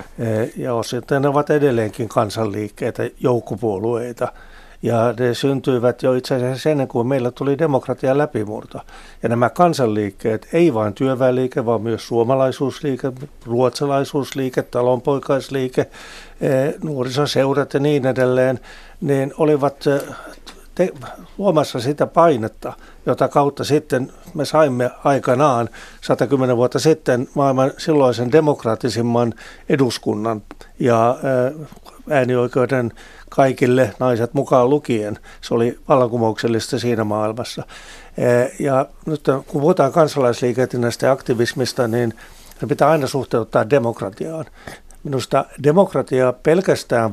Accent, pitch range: native, 115-140 Hz